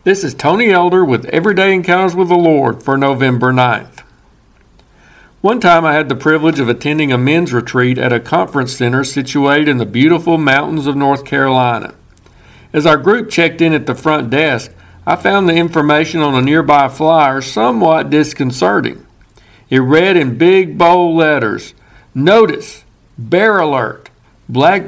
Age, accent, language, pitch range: 50-69, American, English, 125-165 Hz